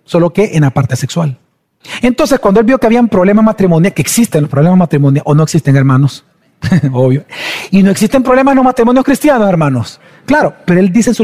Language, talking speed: Spanish, 220 wpm